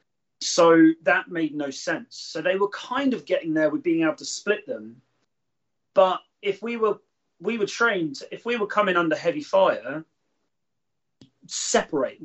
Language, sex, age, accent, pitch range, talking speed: English, male, 30-49, British, 140-205 Hz, 165 wpm